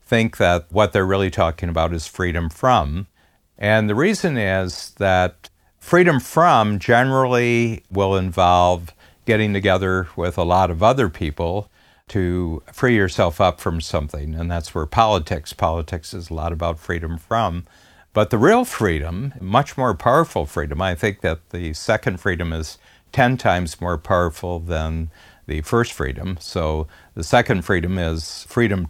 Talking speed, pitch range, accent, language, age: 155 wpm, 85-110 Hz, American, English, 60-79